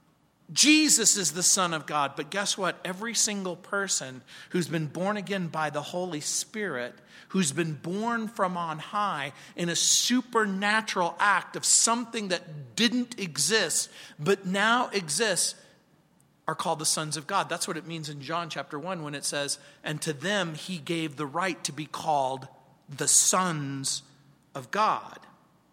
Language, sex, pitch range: English, male, 170-235 Hz